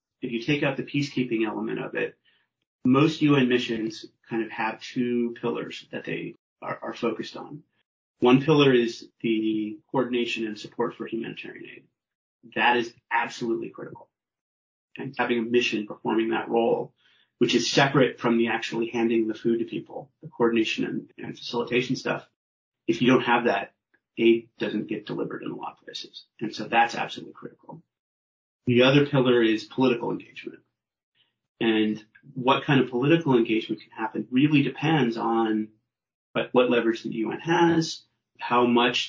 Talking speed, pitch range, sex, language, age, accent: 160 wpm, 115-125 Hz, male, English, 30-49, American